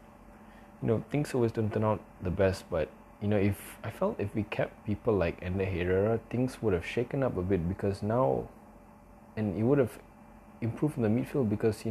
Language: English